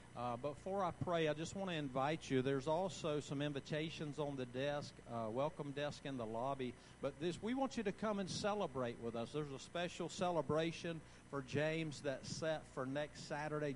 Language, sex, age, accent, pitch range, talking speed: English, male, 50-69, American, 150-225 Hz, 195 wpm